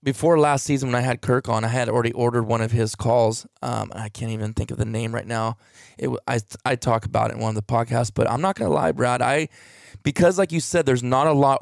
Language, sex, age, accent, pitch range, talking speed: English, male, 20-39, American, 115-140 Hz, 275 wpm